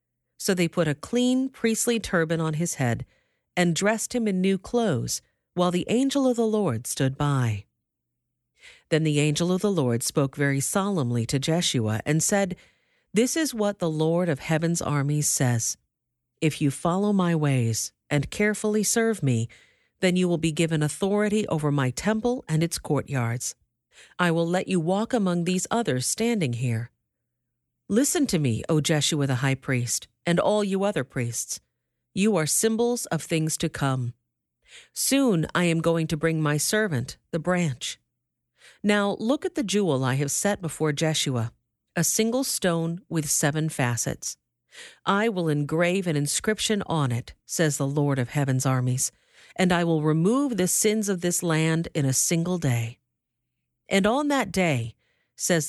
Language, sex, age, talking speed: English, female, 50-69, 165 wpm